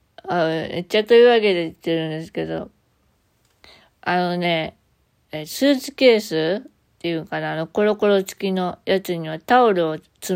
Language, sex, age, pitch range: Japanese, female, 20-39, 165-220 Hz